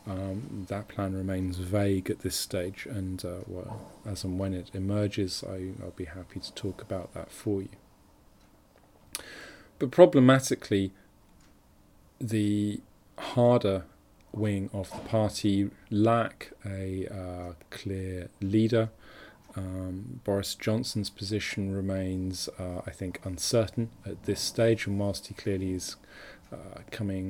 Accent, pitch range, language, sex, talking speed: British, 95-105 Hz, English, male, 125 wpm